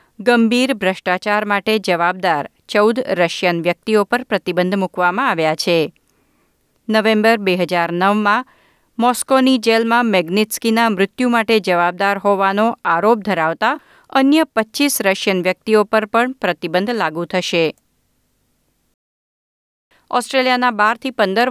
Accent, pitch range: native, 185-245 Hz